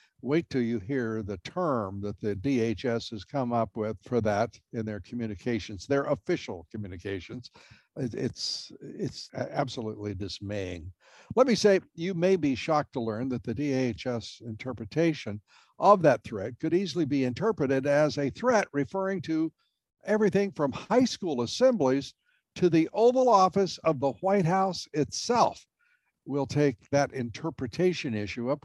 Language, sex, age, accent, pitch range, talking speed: English, male, 60-79, American, 115-160 Hz, 145 wpm